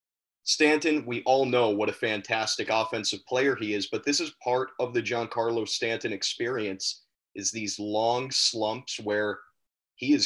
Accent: American